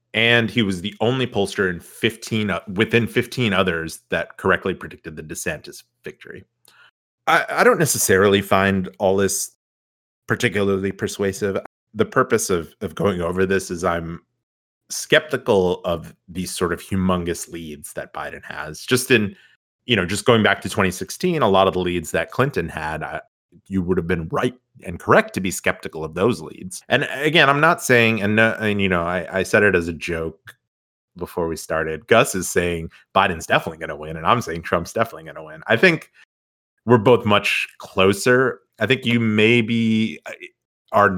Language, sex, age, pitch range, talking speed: English, male, 30-49, 85-110 Hz, 180 wpm